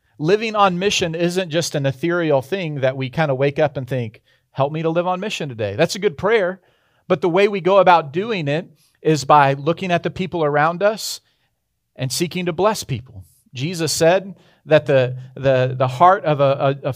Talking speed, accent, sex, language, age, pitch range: 205 wpm, American, male, English, 40-59, 135-175 Hz